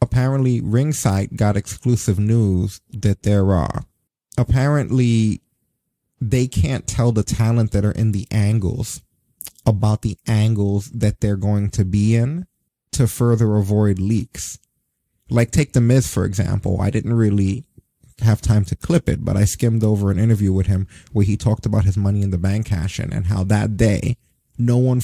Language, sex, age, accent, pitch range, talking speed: English, male, 30-49, American, 105-125 Hz, 170 wpm